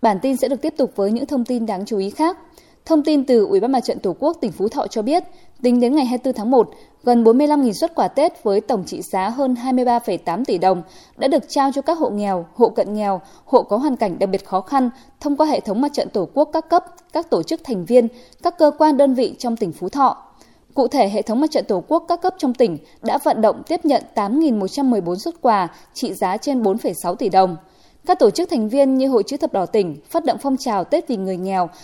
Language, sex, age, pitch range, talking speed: Vietnamese, female, 10-29, 205-290 Hz, 255 wpm